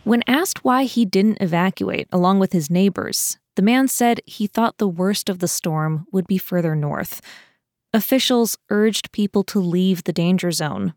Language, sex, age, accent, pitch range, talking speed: English, female, 20-39, American, 180-225 Hz, 175 wpm